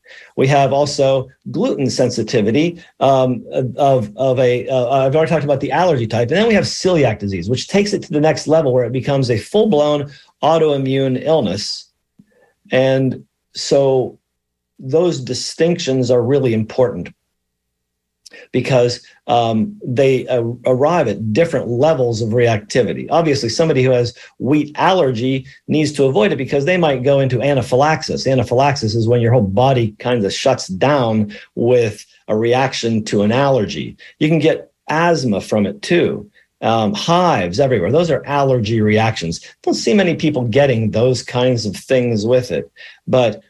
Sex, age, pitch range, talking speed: male, 50-69, 120-145 Hz, 155 wpm